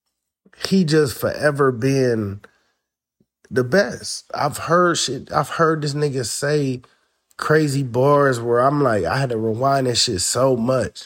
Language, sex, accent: English, male, American